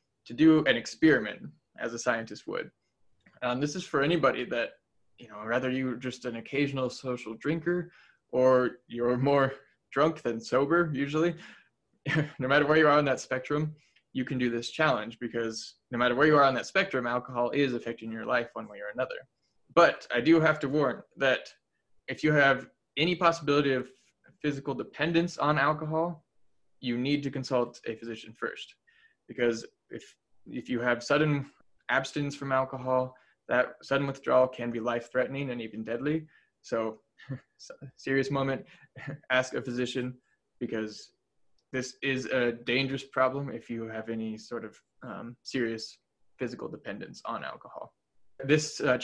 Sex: male